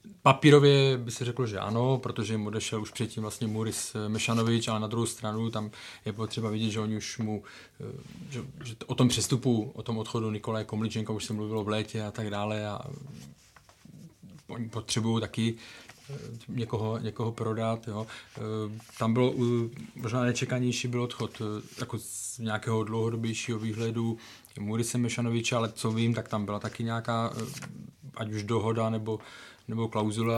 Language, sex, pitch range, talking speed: Czech, male, 110-130 Hz, 155 wpm